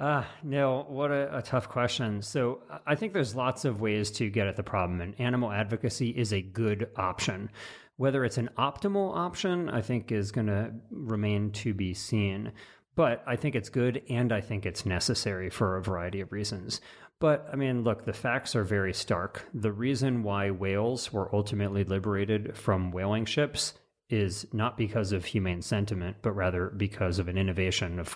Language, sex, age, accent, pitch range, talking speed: English, male, 30-49, American, 95-120 Hz, 185 wpm